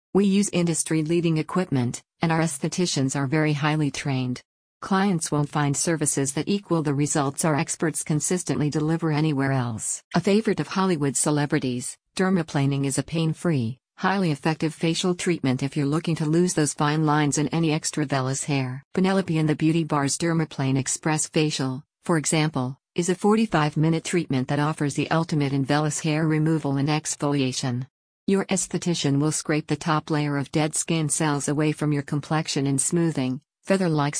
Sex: female